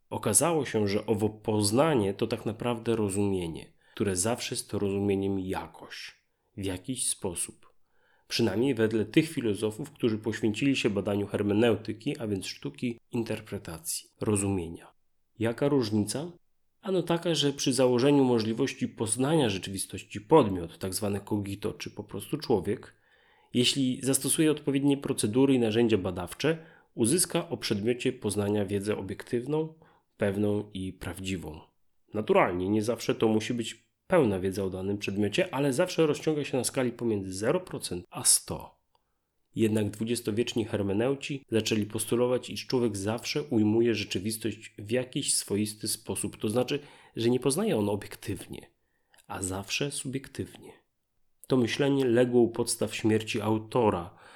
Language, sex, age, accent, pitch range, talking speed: Polish, male, 30-49, native, 105-130 Hz, 130 wpm